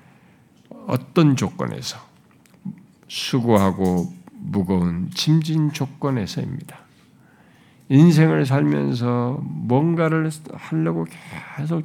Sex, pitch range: male, 100-160 Hz